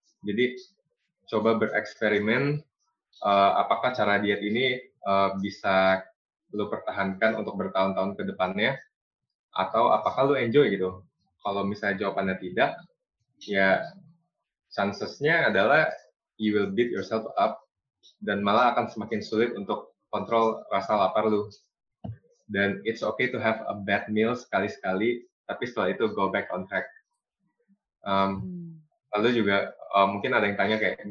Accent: native